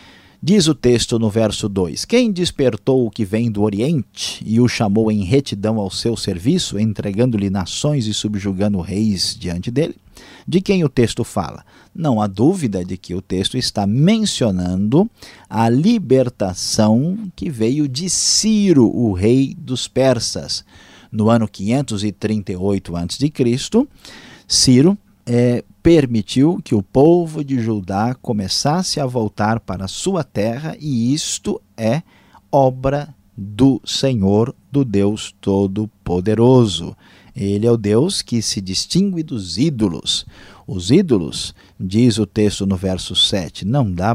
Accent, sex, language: Brazilian, male, Portuguese